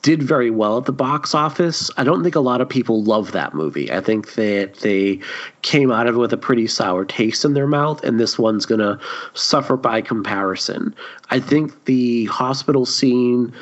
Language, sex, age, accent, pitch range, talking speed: English, male, 30-49, American, 115-140 Hz, 205 wpm